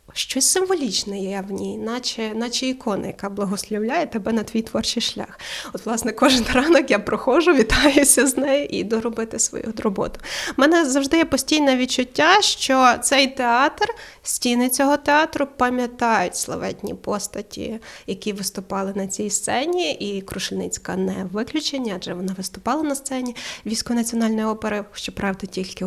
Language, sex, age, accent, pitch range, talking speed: Ukrainian, female, 20-39, native, 210-270 Hz, 145 wpm